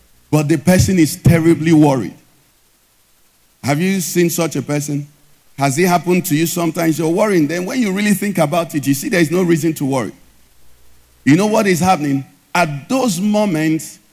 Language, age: English, 50-69